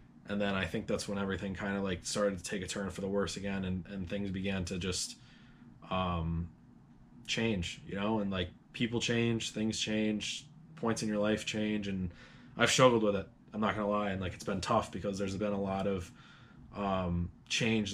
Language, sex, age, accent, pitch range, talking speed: English, male, 20-39, American, 95-110 Hz, 210 wpm